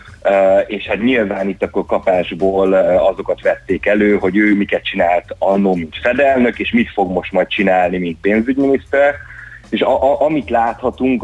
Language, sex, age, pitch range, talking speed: Hungarian, male, 30-49, 90-105 Hz, 165 wpm